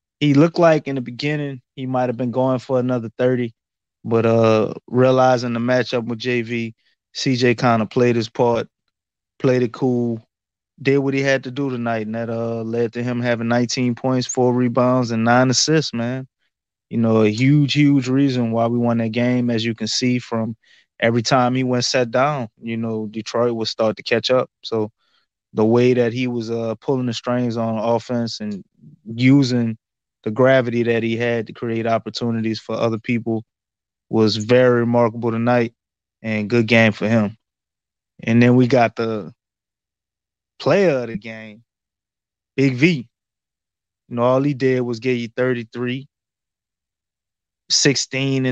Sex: male